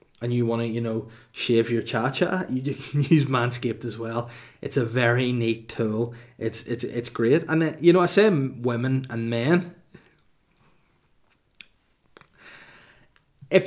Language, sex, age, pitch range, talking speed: English, male, 20-39, 115-140 Hz, 150 wpm